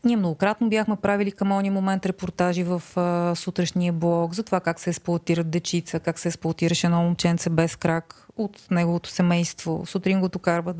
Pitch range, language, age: 175-205 Hz, Bulgarian, 30-49